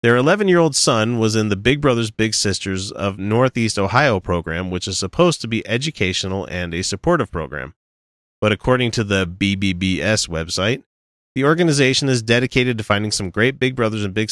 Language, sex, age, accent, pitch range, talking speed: English, male, 30-49, American, 95-130 Hz, 175 wpm